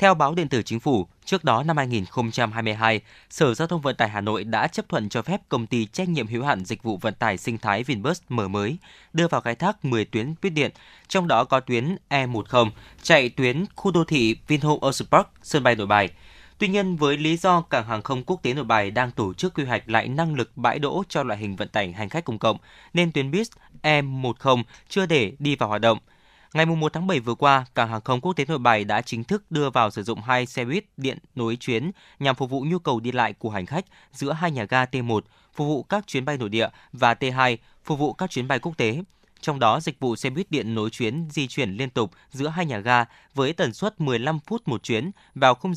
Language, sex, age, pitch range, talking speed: Vietnamese, male, 20-39, 115-155 Hz, 245 wpm